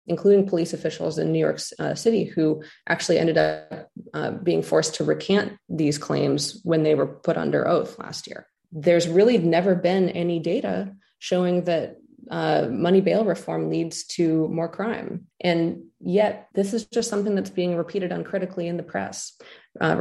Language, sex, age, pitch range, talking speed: English, female, 20-39, 160-190 Hz, 170 wpm